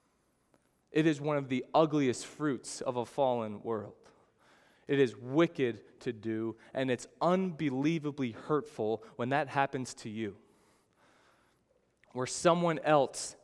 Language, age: English, 20-39